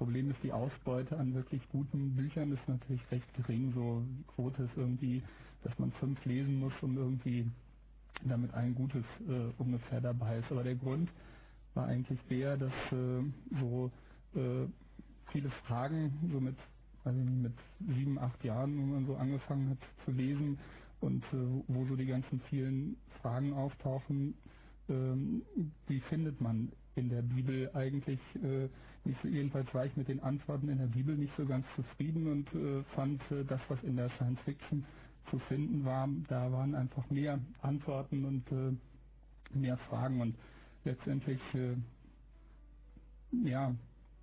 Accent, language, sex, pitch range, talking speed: German, German, male, 125-140 Hz, 155 wpm